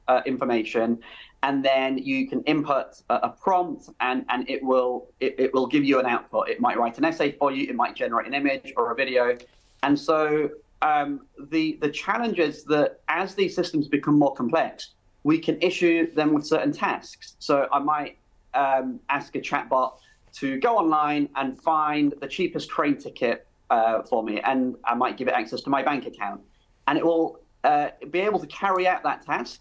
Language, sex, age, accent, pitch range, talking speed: English, male, 30-49, British, 135-170 Hz, 195 wpm